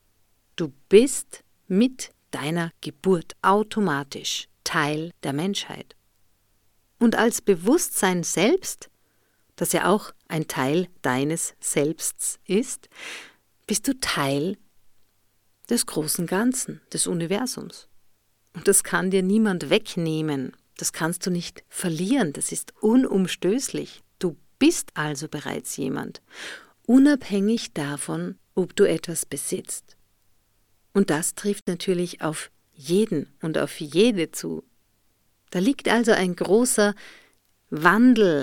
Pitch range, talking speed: 145-210 Hz, 110 wpm